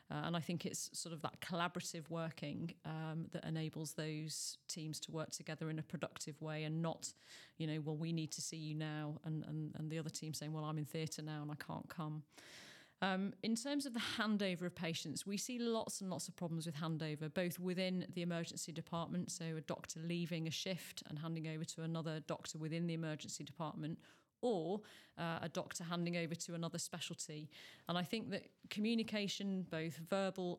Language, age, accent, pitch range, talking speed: English, 40-59, British, 155-180 Hz, 200 wpm